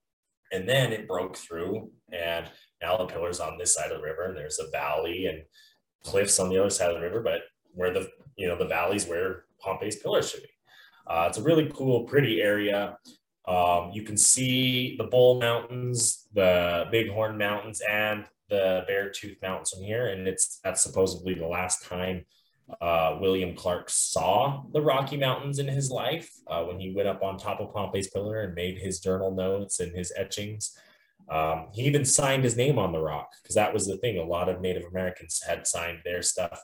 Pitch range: 90-125 Hz